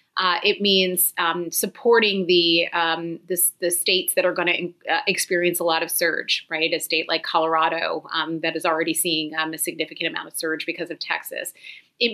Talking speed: 185 wpm